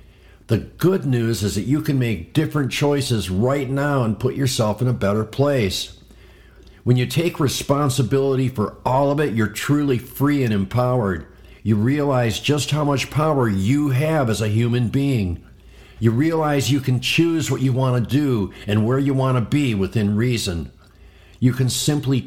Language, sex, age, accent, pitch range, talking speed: English, male, 50-69, American, 105-140 Hz, 170 wpm